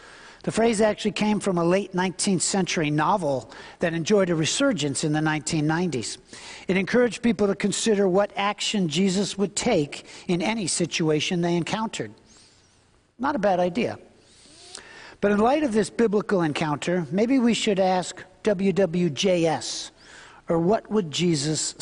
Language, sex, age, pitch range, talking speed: English, male, 60-79, 165-215 Hz, 145 wpm